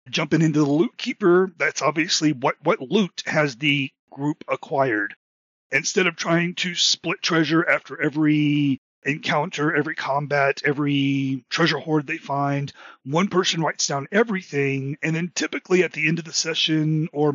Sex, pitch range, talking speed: male, 140-165 Hz, 155 wpm